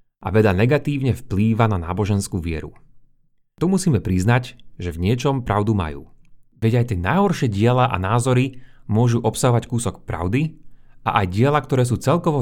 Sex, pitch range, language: male, 105-130 Hz, Slovak